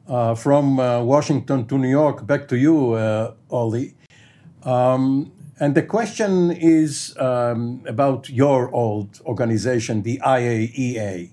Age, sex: 60-79, male